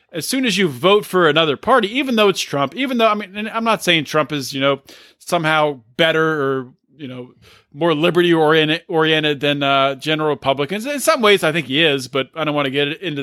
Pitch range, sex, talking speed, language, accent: 140-185 Hz, male, 230 wpm, English, American